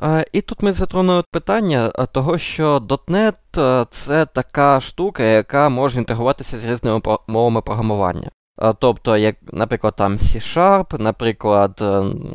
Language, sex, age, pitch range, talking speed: Ukrainian, male, 20-39, 115-150 Hz, 120 wpm